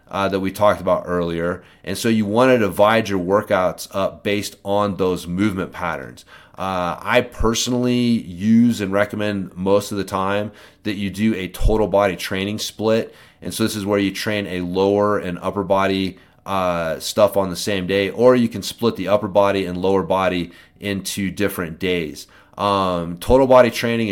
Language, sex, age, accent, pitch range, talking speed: English, male, 30-49, American, 95-105 Hz, 180 wpm